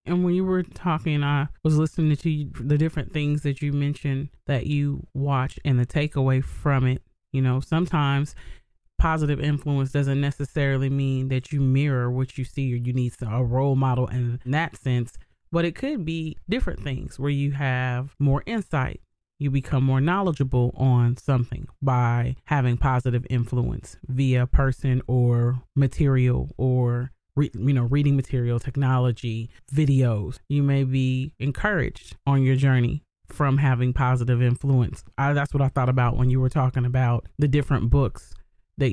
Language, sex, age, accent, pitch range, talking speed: English, male, 30-49, American, 125-145 Hz, 160 wpm